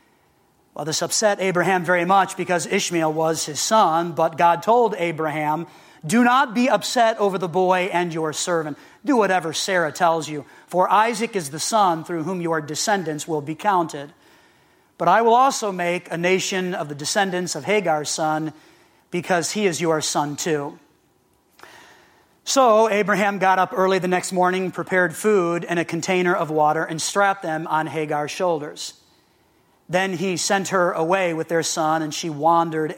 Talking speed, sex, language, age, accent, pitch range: 170 wpm, male, English, 30-49, American, 155-190 Hz